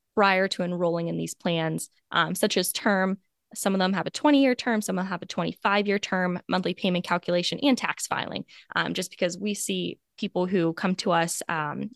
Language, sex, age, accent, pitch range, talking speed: English, female, 10-29, American, 175-210 Hz, 195 wpm